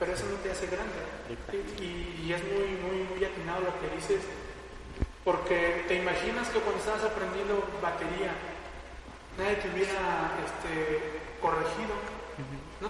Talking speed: 140 wpm